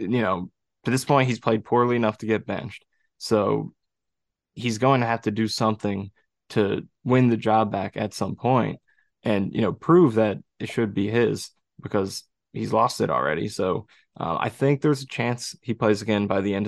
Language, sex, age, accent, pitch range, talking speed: English, male, 20-39, American, 105-125 Hz, 200 wpm